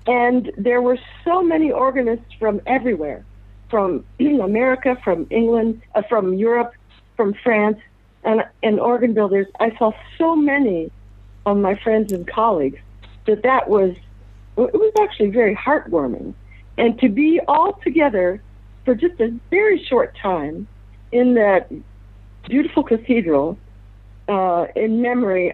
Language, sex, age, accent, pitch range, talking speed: English, female, 60-79, American, 175-240 Hz, 130 wpm